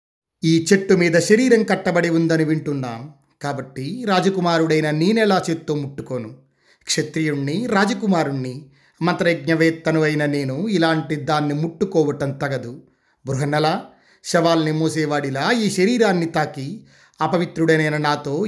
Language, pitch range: Telugu, 150-185 Hz